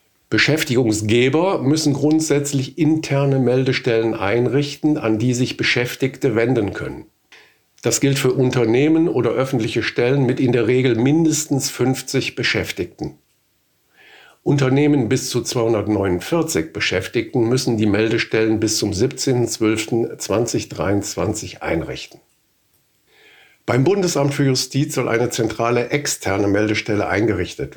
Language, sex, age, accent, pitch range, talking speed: German, male, 50-69, German, 110-135 Hz, 105 wpm